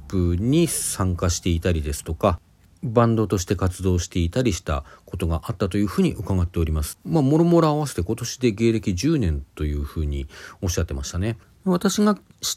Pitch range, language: 85-135 Hz, Japanese